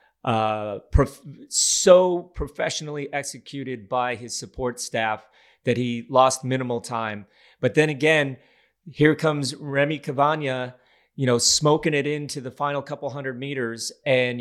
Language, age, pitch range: English, 30-49, 120-140 Hz